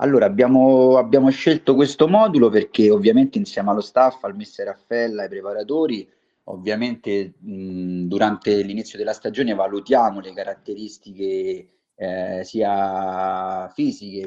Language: Italian